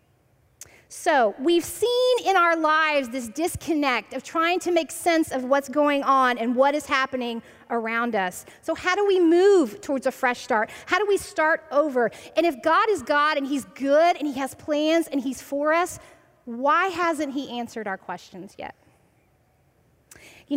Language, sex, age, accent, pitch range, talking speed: English, female, 30-49, American, 235-330 Hz, 180 wpm